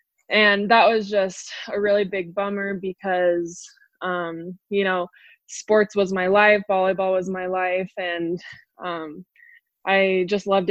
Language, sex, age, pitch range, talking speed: English, female, 20-39, 185-205 Hz, 140 wpm